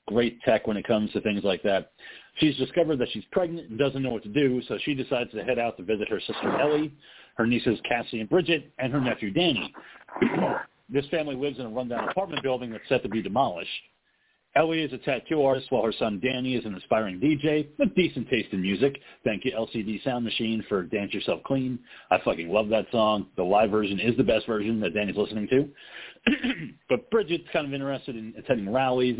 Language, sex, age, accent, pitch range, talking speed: English, male, 40-59, American, 110-145 Hz, 215 wpm